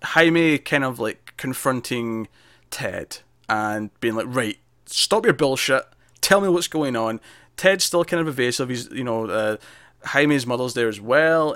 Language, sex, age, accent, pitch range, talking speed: English, male, 20-39, British, 110-130 Hz, 165 wpm